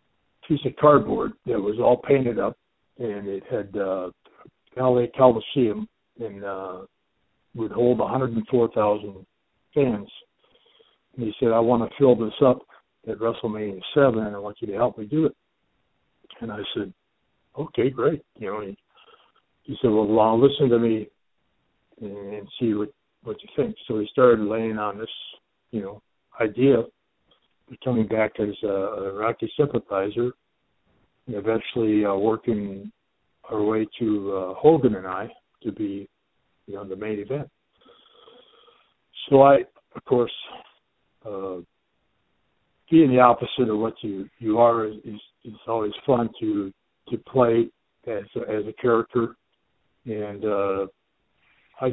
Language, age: English, 60-79